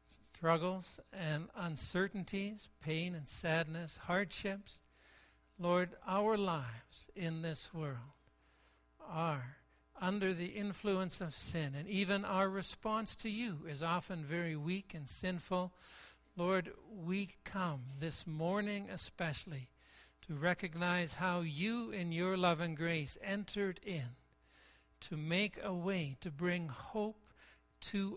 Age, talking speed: 60-79, 120 wpm